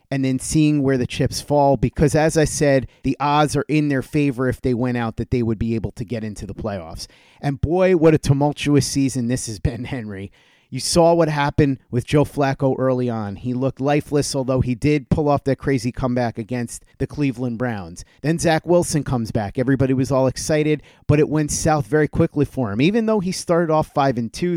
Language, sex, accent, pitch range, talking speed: English, male, American, 125-150 Hz, 220 wpm